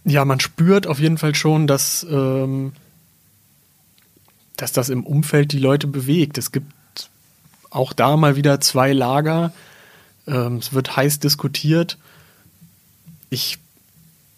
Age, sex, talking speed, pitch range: 30-49, male, 125 wpm, 130-150 Hz